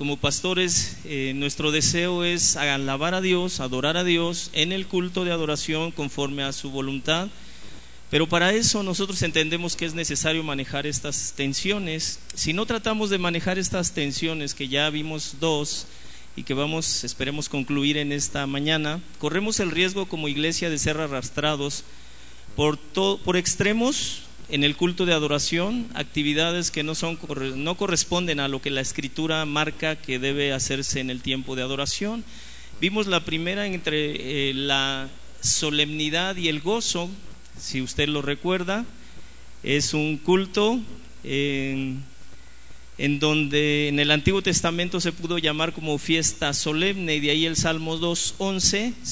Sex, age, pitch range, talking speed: male, 40-59, 140-175 Hz, 150 wpm